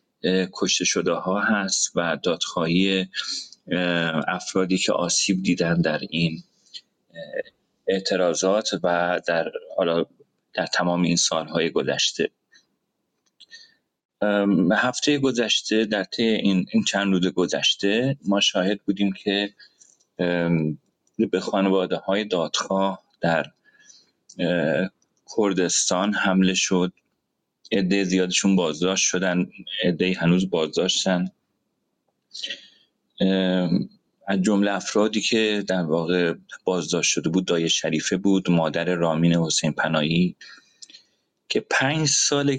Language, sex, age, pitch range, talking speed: English, male, 30-49, 85-105 Hz, 95 wpm